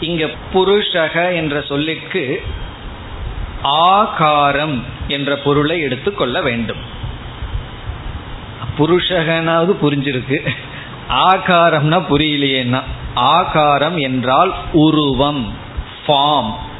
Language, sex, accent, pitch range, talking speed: Tamil, male, native, 125-160 Hz, 55 wpm